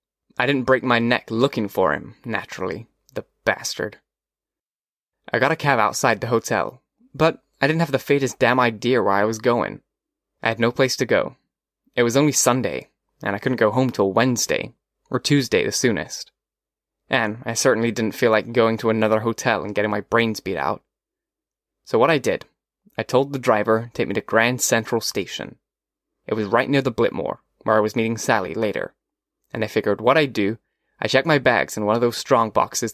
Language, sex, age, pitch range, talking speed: English, male, 10-29, 110-130 Hz, 200 wpm